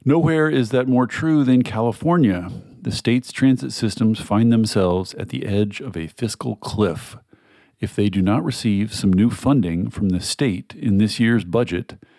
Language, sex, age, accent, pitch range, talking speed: English, male, 50-69, American, 95-120 Hz, 170 wpm